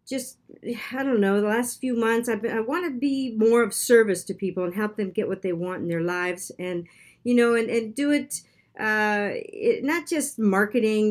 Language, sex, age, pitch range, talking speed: English, female, 50-69, 185-235 Hz, 220 wpm